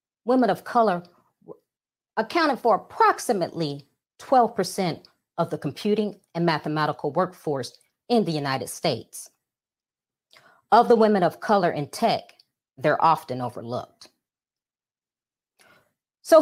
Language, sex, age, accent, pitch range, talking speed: English, female, 40-59, American, 150-220 Hz, 100 wpm